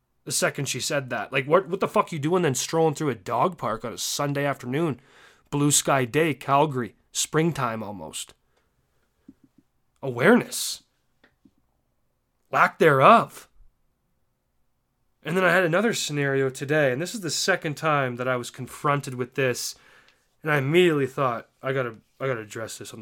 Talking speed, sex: 160 wpm, male